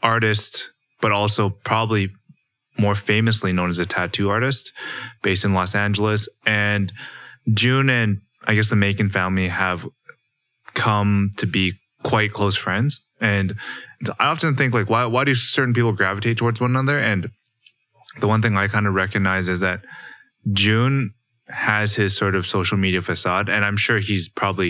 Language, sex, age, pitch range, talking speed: English, male, 20-39, 95-115 Hz, 165 wpm